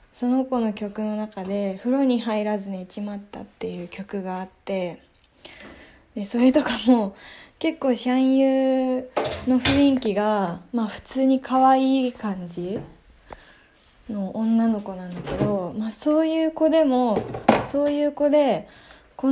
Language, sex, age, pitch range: Japanese, female, 20-39, 205-260 Hz